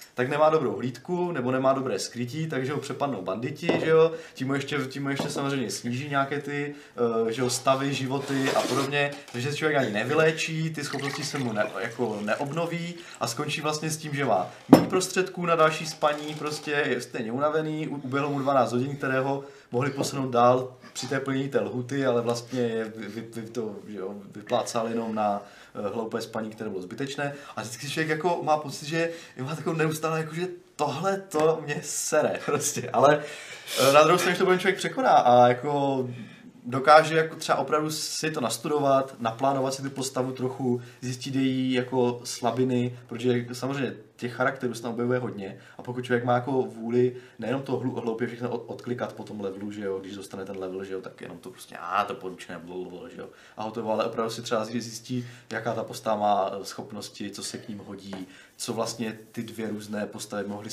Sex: male